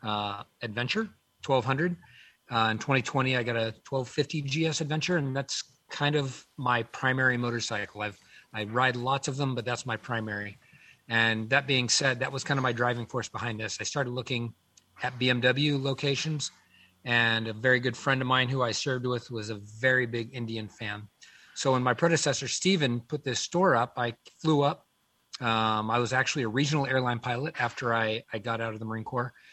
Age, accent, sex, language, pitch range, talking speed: 40-59, American, male, English, 115-135 Hz, 190 wpm